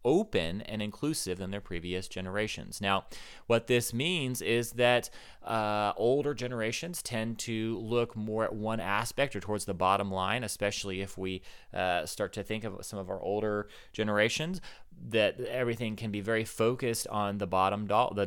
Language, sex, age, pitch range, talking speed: English, male, 30-49, 100-115 Hz, 170 wpm